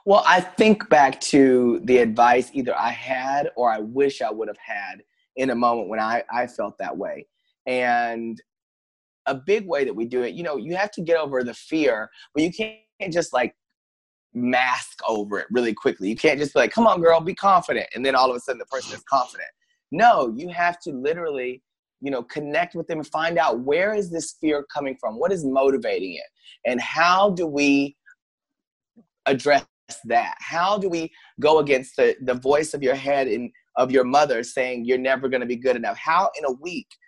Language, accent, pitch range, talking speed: English, American, 125-200 Hz, 210 wpm